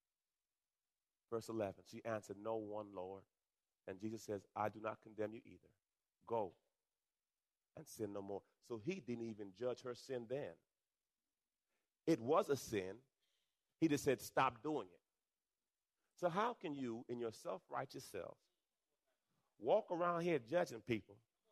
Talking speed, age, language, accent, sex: 145 wpm, 30-49, English, American, male